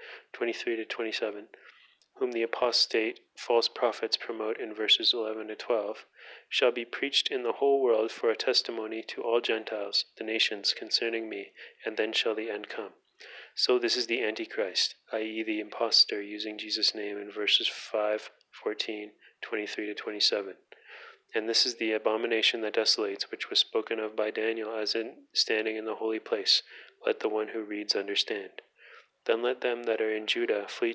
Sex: male